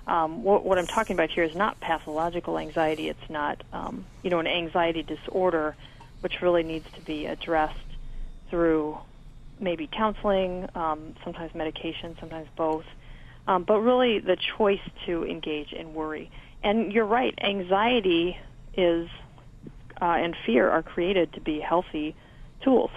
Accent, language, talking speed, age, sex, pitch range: American, English, 145 wpm, 40-59, female, 155-180 Hz